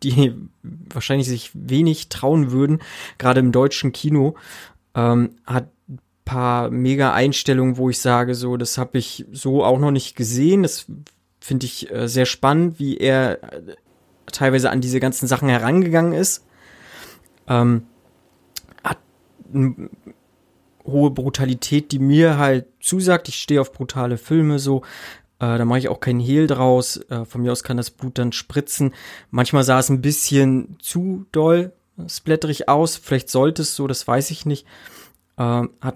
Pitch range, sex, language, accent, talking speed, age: 125-140 Hz, male, German, German, 150 wpm, 20-39